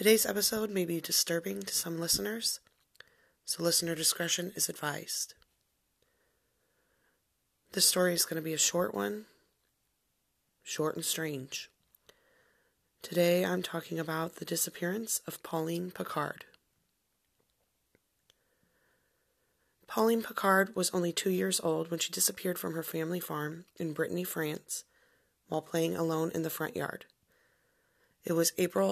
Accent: American